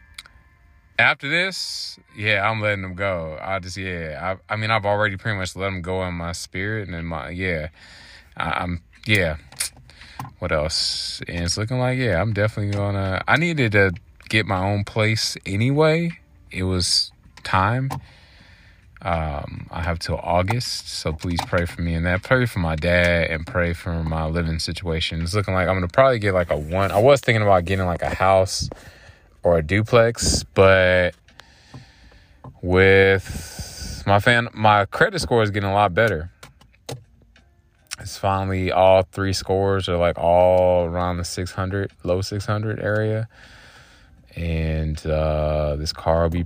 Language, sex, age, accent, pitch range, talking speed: English, male, 20-39, American, 85-100 Hz, 165 wpm